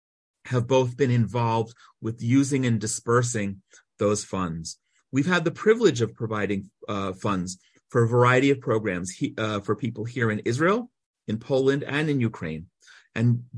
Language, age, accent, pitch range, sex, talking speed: English, 40-59, American, 100-125 Hz, male, 160 wpm